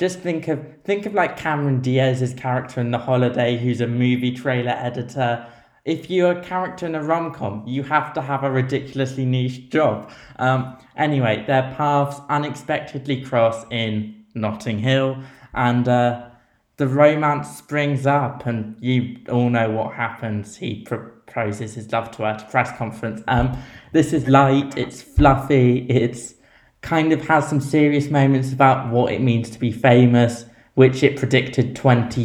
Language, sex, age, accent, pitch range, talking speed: English, male, 20-39, British, 115-140 Hz, 160 wpm